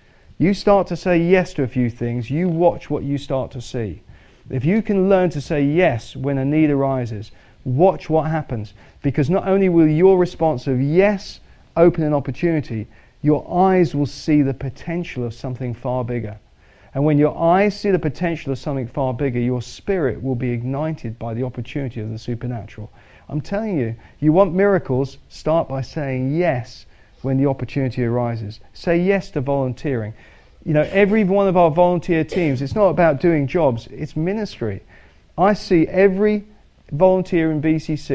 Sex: male